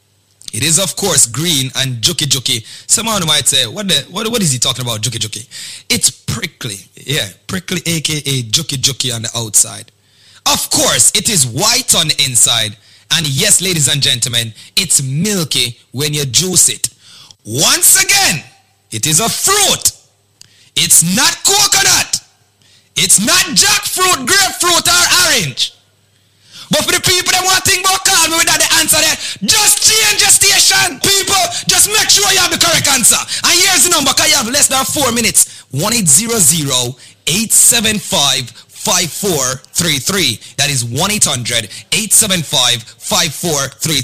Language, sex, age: English, male, 30-49